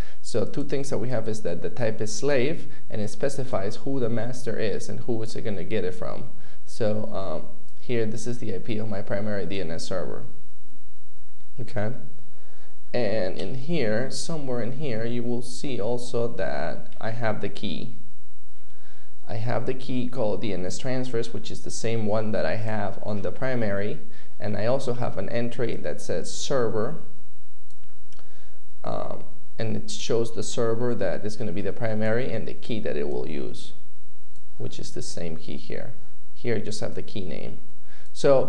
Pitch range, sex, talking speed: 105-120 Hz, male, 180 wpm